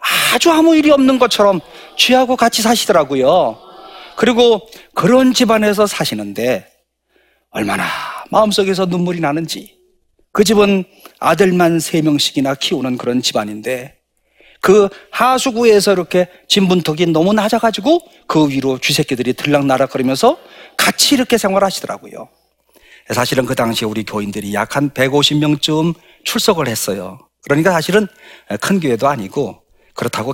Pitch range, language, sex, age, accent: 130-215 Hz, Korean, male, 40-59, native